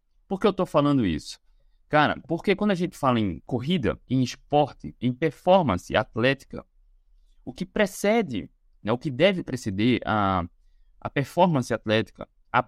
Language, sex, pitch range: Portuguese, male, 120-165 Hz